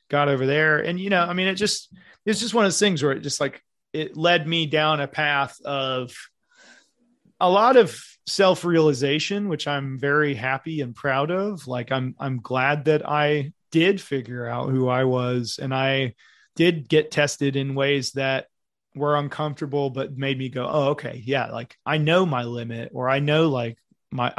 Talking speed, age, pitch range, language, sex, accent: 190 wpm, 30-49, 130-160 Hz, English, male, American